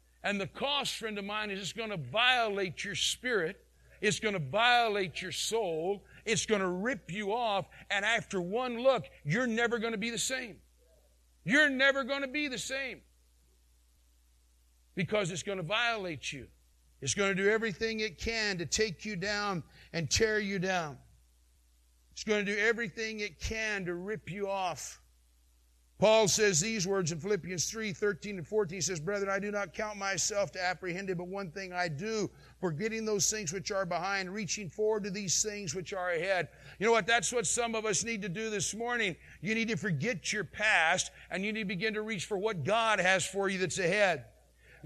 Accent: American